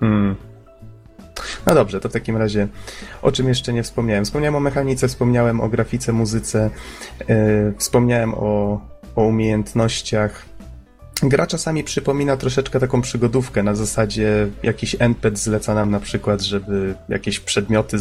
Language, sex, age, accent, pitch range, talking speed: Polish, male, 30-49, native, 105-130 Hz, 130 wpm